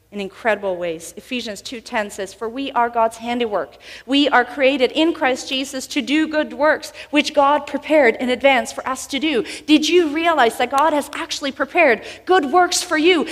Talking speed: 190 wpm